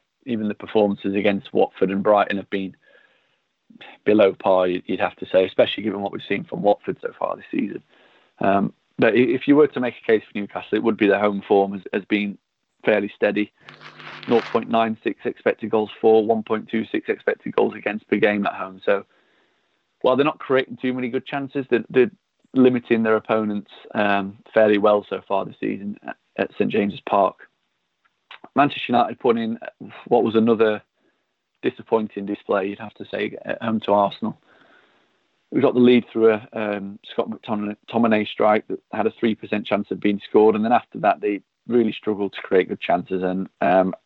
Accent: British